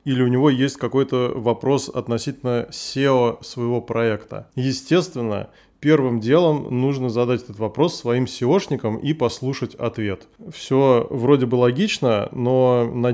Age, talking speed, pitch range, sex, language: 20-39, 130 wpm, 120-145 Hz, male, Russian